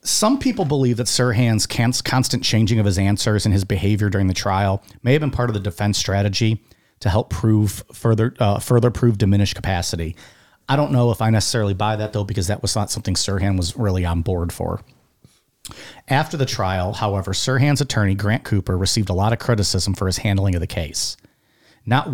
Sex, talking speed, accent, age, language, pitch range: male, 200 wpm, American, 40-59, English, 95-120 Hz